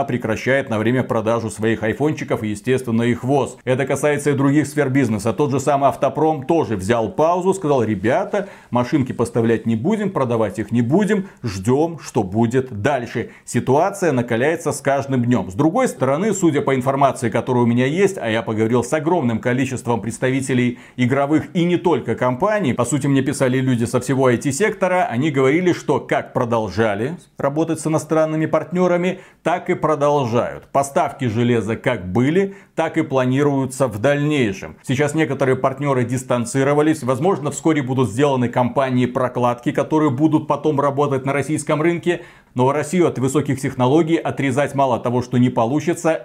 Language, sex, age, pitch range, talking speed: Russian, male, 40-59, 125-155 Hz, 155 wpm